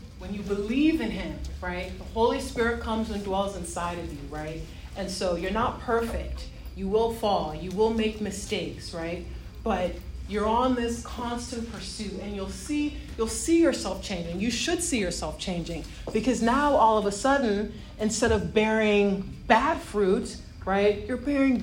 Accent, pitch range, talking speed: American, 205-265 Hz, 170 wpm